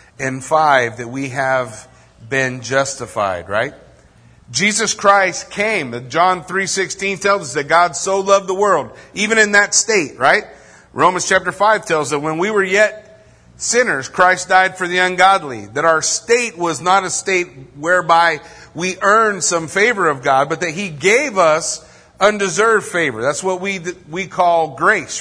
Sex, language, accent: male, English, American